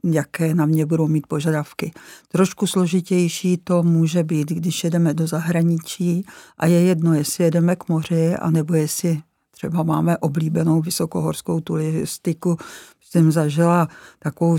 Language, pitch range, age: Czech, 155-170 Hz, 50-69